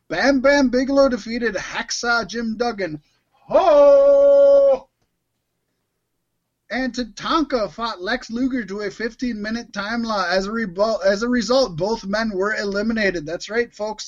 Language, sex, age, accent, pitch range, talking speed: English, male, 20-39, American, 175-240 Hz, 125 wpm